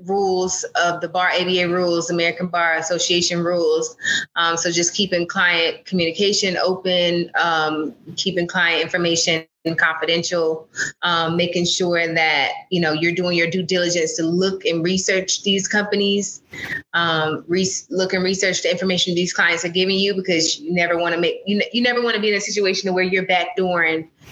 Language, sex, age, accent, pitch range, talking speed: English, female, 20-39, American, 165-190 Hz, 175 wpm